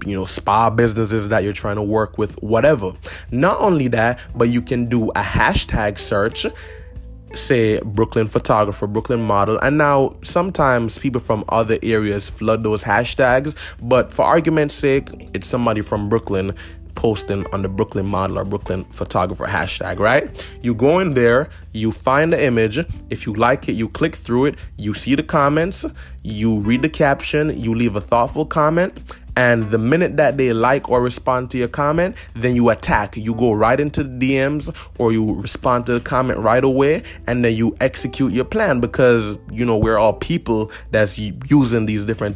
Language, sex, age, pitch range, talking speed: English, male, 20-39, 105-130 Hz, 180 wpm